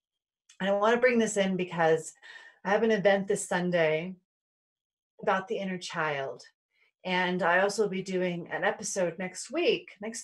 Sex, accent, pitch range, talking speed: female, American, 175-240 Hz, 170 wpm